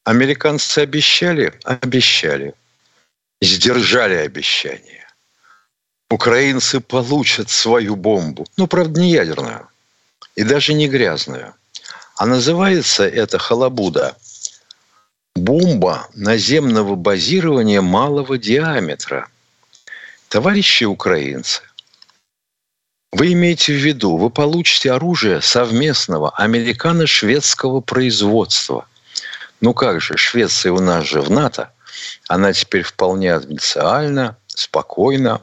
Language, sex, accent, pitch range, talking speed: Russian, male, native, 110-155 Hz, 90 wpm